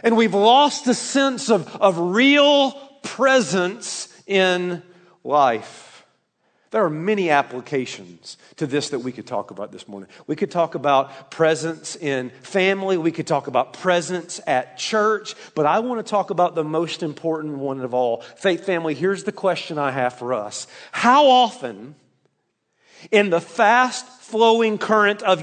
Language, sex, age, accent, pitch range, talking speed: English, male, 40-59, American, 170-230 Hz, 160 wpm